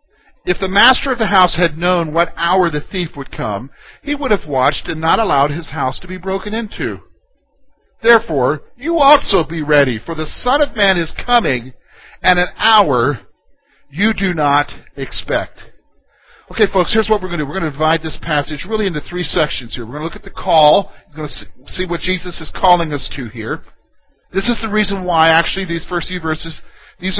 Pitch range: 160-220 Hz